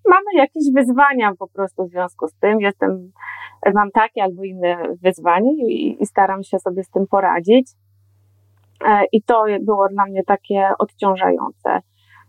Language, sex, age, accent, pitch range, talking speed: Polish, female, 20-39, native, 195-255 Hz, 145 wpm